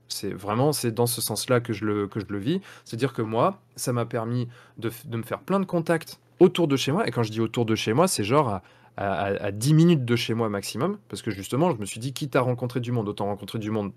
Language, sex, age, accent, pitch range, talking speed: French, male, 20-39, French, 115-150 Hz, 280 wpm